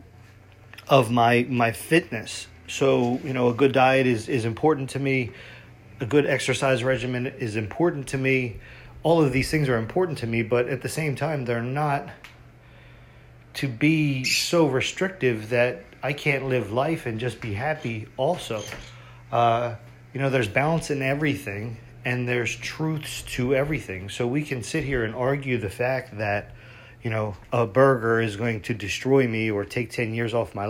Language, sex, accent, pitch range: English, male, American, 115-135 Hz